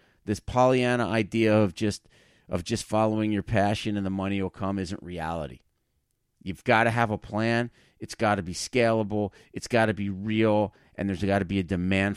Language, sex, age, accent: English, male, 40-59, American